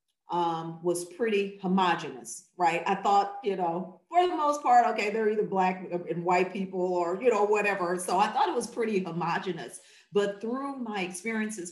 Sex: female